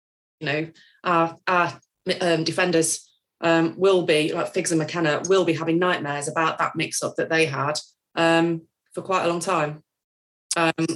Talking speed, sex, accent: 165 wpm, female, British